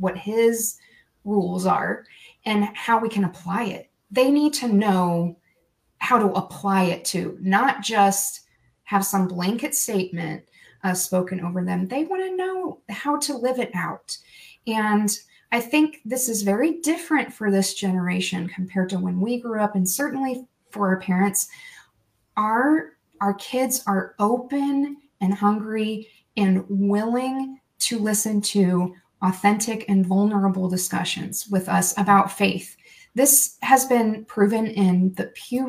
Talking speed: 145 wpm